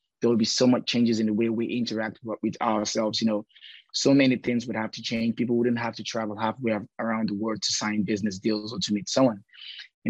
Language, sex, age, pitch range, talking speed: English, male, 20-39, 105-120 Hz, 240 wpm